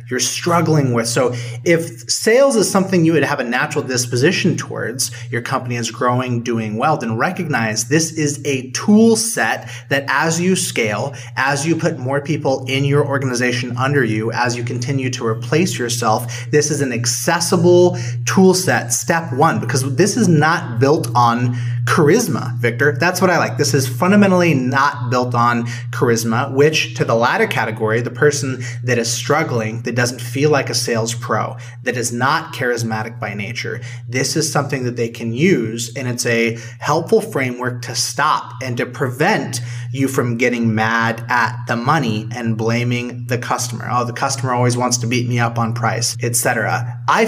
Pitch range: 120-145 Hz